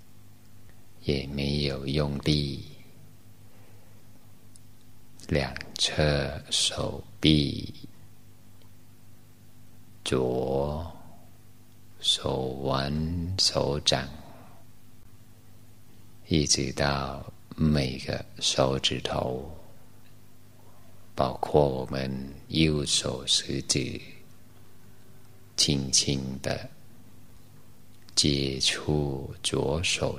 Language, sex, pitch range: Chinese, male, 70-115 Hz